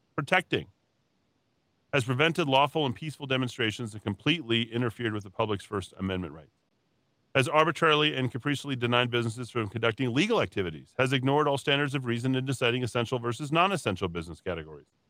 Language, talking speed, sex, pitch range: English, 160 wpm, male, 105-130 Hz